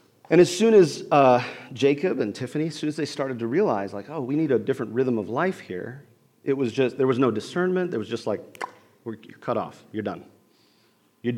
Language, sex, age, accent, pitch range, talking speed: English, male, 40-59, American, 105-140 Hz, 220 wpm